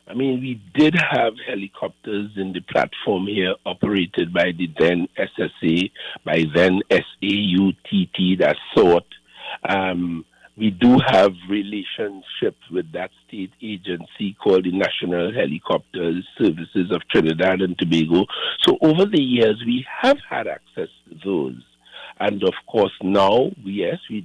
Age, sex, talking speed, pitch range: 50-69, male, 130 wpm, 95-120 Hz